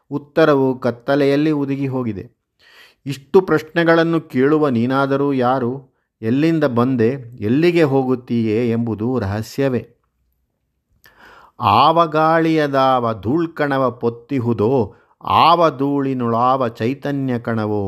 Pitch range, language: 115-145 Hz, Kannada